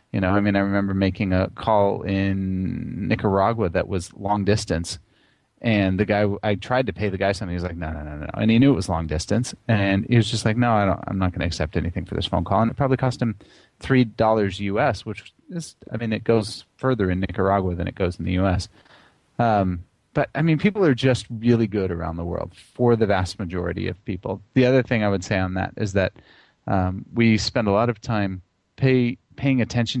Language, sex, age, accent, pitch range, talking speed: English, male, 30-49, American, 90-115 Hz, 235 wpm